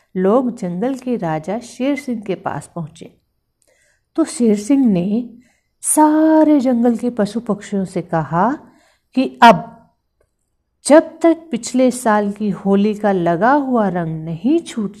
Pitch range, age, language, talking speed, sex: 175-245 Hz, 50-69, Hindi, 135 wpm, female